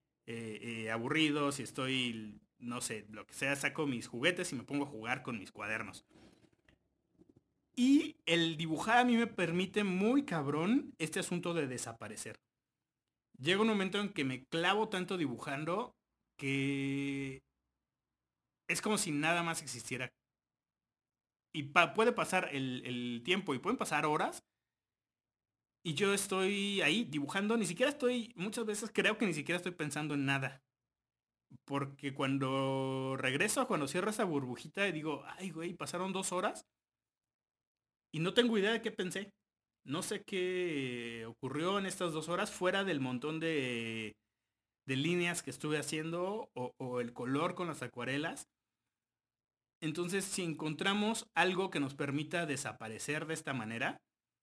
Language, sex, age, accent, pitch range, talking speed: Spanish, male, 30-49, Mexican, 125-185 Hz, 150 wpm